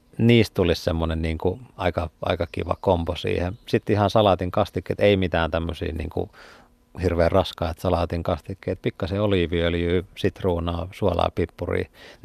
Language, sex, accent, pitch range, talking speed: Finnish, male, native, 85-100 Hz, 125 wpm